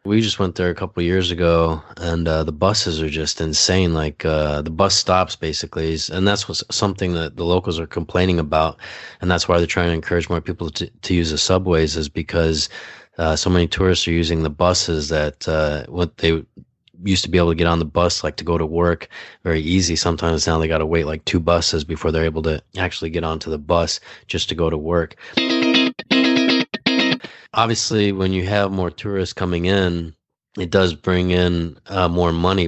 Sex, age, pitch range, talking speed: male, 20-39, 80-90 Hz, 210 wpm